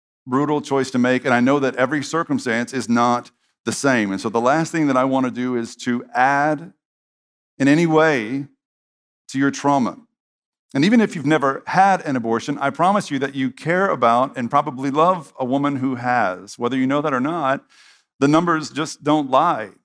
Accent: American